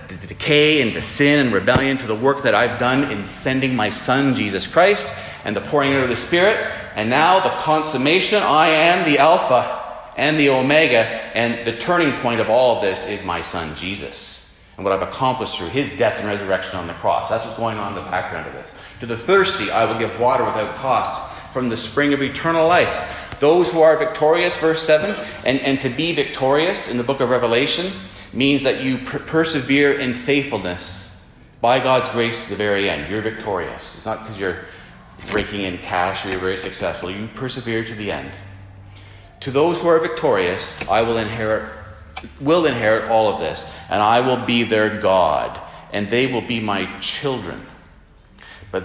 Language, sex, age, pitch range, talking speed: English, male, 30-49, 100-135 Hz, 195 wpm